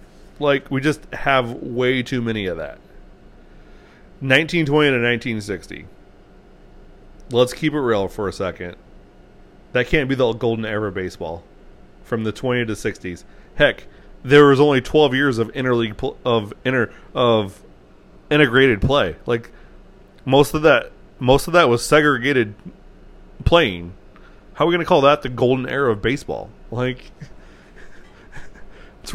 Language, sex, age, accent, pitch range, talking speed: English, male, 30-49, American, 105-140 Hz, 145 wpm